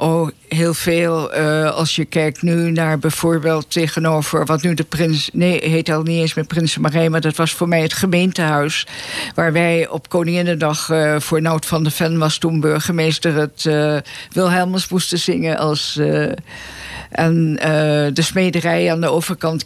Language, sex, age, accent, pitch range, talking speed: Dutch, female, 50-69, Dutch, 150-170 Hz, 175 wpm